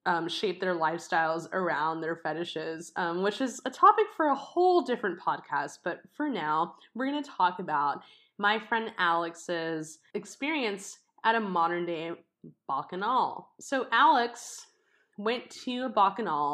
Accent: American